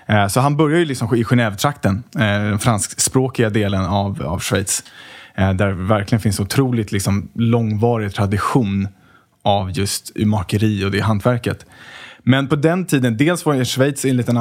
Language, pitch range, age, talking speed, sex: Swedish, 105-125 Hz, 20-39, 145 wpm, male